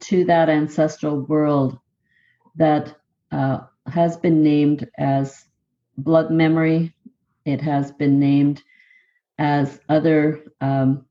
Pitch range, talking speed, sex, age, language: 140-170 Hz, 105 wpm, female, 50-69, English